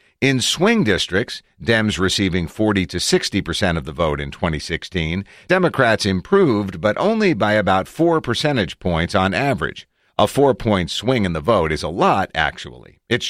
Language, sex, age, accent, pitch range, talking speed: English, male, 50-69, American, 90-125 Hz, 160 wpm